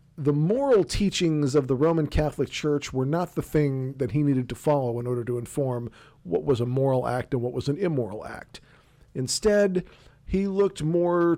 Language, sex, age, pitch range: English, male, 40-59, 125-150 Hz